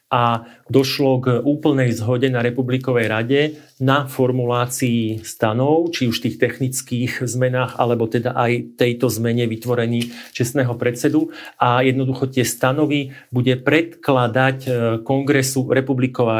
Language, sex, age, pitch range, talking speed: Slovak, male, 40-59, 125-145 Hz, 120 wpm